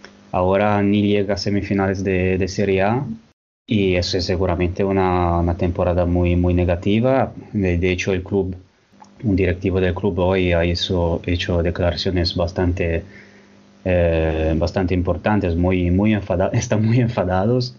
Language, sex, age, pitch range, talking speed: Spanish, male, 20-39, 90-100 Hz, 145 wpm